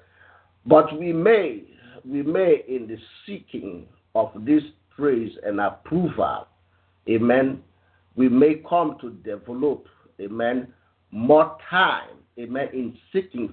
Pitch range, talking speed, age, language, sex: 105-175 Hz, 110 wpm, 50-69, English, male